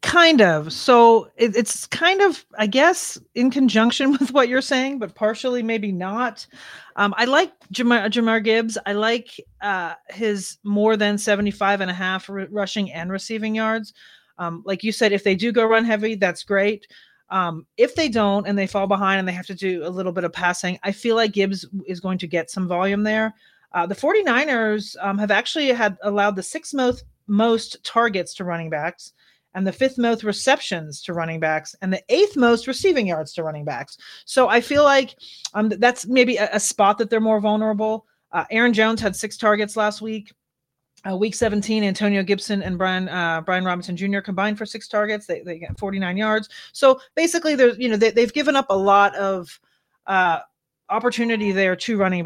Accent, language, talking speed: American, English, 195 wpm